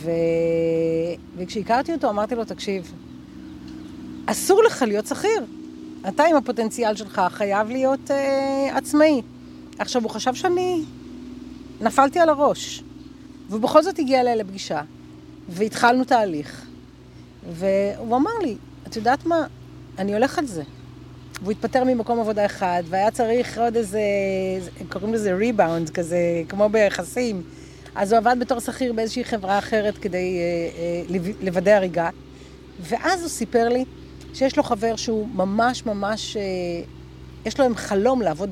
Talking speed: 135 wpm